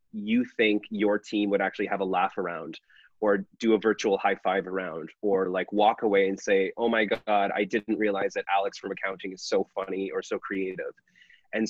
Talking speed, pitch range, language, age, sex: 205 wpm, 95-105 Hz, English, 30-49, male